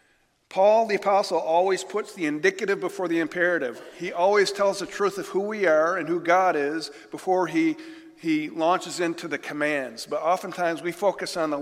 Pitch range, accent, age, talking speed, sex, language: 150-200 Hz, American, 50-69, 185 wpm, male, English